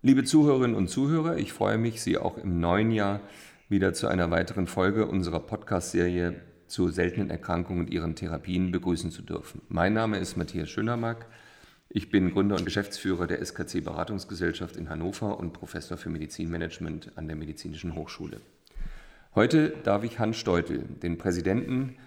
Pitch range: 85-110 Hz